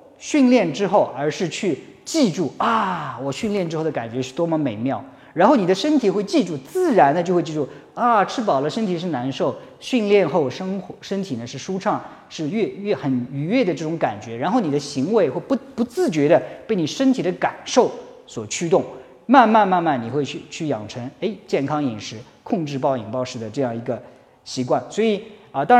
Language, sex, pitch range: Chinese, male, 135-205 Hz